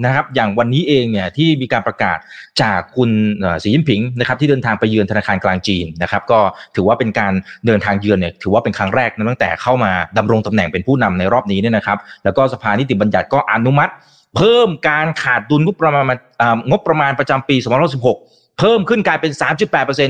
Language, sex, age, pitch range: Thai, male, 30-49, 105-140 Hz